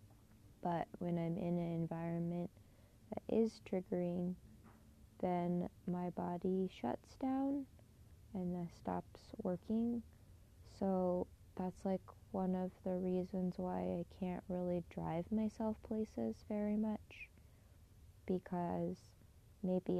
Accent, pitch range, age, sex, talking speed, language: American, 115-185 Hz, 20-39, female, 105 wpm, English